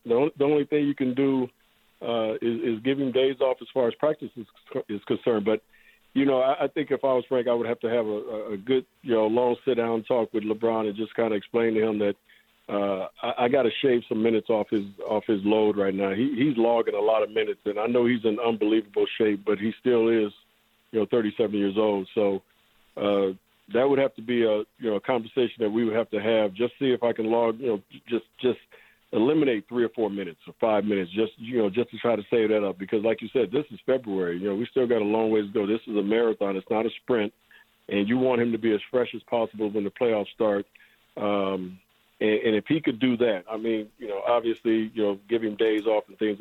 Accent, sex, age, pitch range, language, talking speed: American, male, 50-69, 105-120 Hz, English, 255 wpm